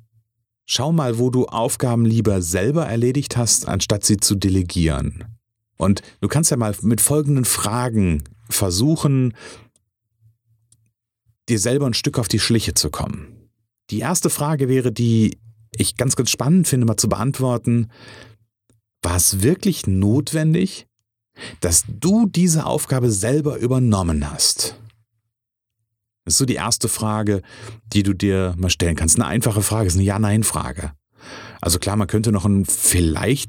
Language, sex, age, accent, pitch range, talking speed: German, male, 40-59, German, 100-125 Hz, 145 wpm